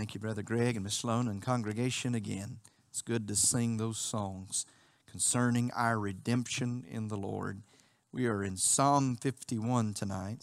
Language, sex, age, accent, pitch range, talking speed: English, male, 40-59, American, 105-125 Hz, 160 wpm